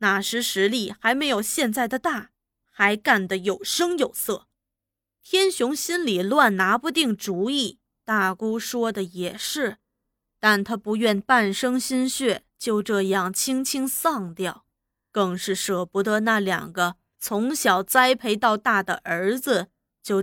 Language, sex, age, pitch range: Chinese, female, 20-39, 190-235 Hz